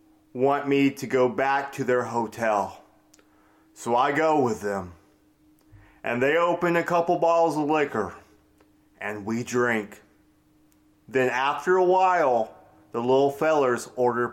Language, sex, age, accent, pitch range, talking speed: English, male, 30-49, American, 105-155 Hz, 135 wpm